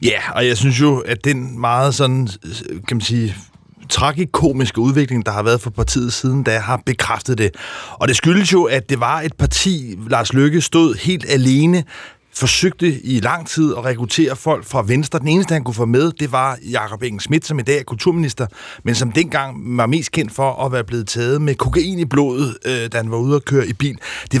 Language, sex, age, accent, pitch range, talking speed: Danish, male, 30-49, native, 130-165 Hz, 200 wpm